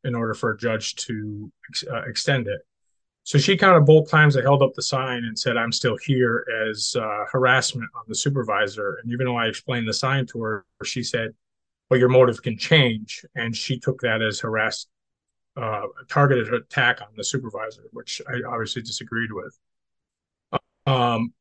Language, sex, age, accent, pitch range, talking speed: English, male, 30-49, American, 115-140 Hz, 185 wpm